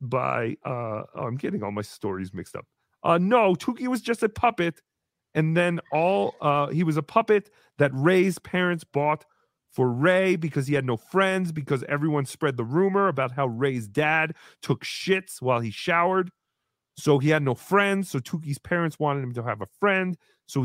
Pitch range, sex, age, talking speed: 150-230 Hz, male, 30-49, 190 wpm